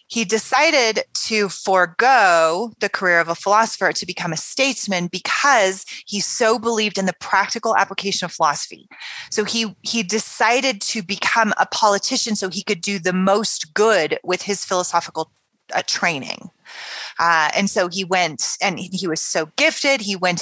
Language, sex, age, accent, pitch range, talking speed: English, female, 20-39, American, 170-220 Hz, 160 wpm